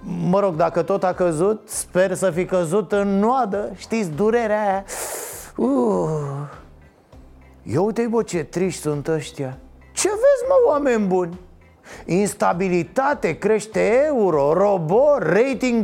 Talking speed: 115 wpm